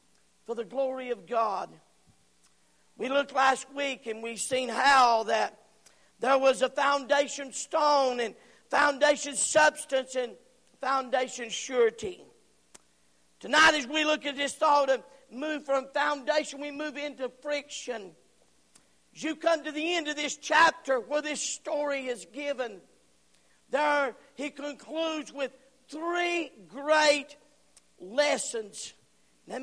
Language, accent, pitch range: English, American, 235-300 Hz